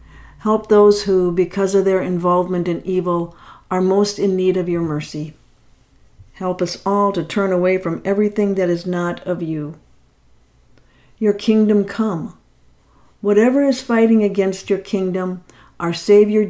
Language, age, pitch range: English, 50-69, 160-200 Hz